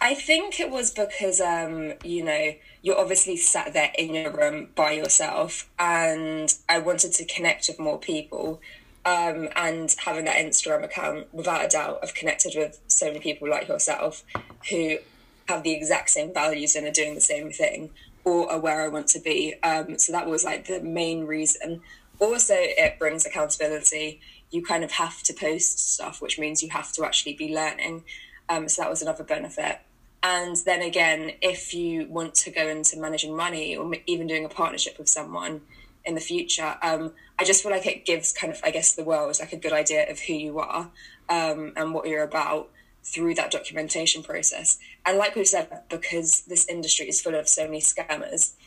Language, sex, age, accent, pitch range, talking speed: English, female, 10-29, British, 155-180 Hz, 195 wpm